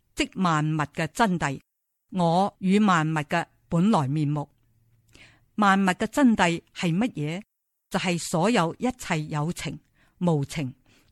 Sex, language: female, Chinese